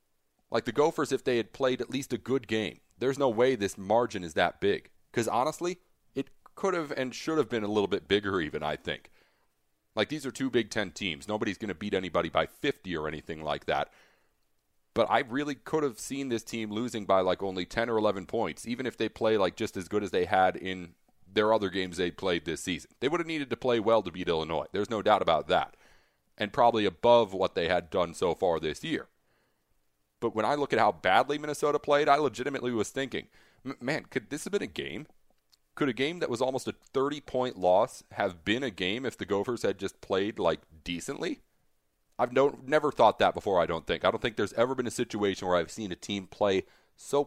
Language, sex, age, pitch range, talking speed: English, male, 30-49, 90-135 Hz, 225 wpm